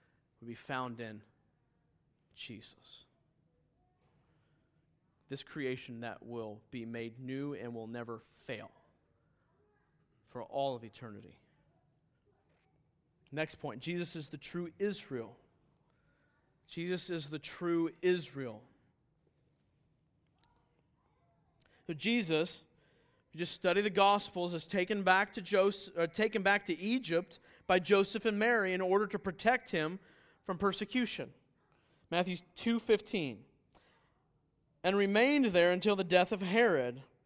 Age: 30-49